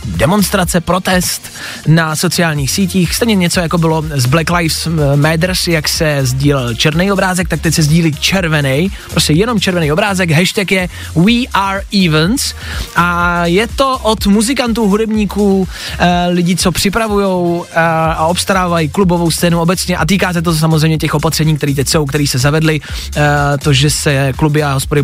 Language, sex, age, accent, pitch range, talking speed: Czech, male, 20-39, native, 150-180 Hz, 155 wpm